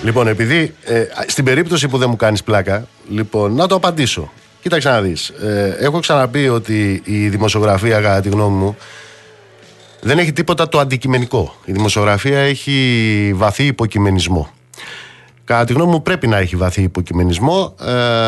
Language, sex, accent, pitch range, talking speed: Greek, male, native, 100-135 Hz, 145 wpm